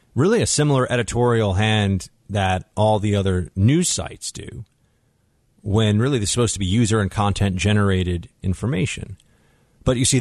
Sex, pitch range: male, 90-120 Hz